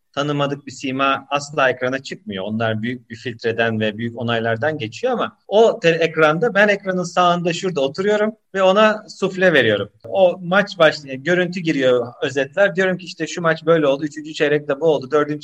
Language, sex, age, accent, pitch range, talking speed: Turkish, male, 40-59, native, 135-185 Hz, 175 wpm